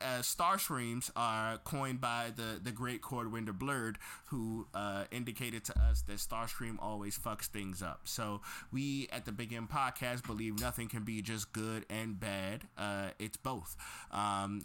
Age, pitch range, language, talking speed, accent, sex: 20-39, 100-125 Hz, English, 170 wpm, American, male